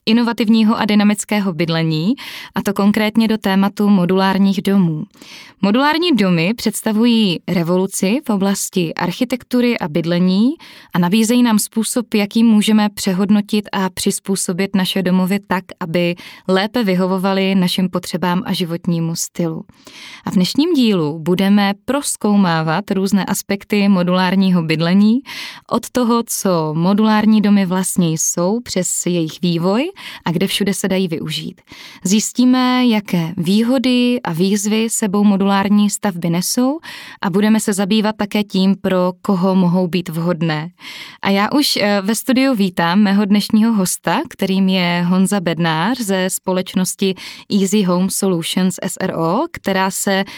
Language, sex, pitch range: Czech, female, 185-220 Hz